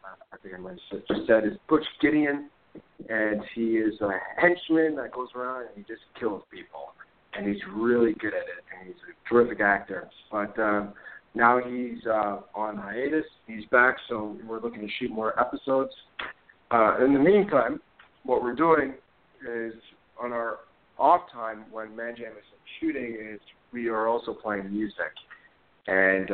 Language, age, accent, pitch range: English, 40-59, American, 100-120 Hz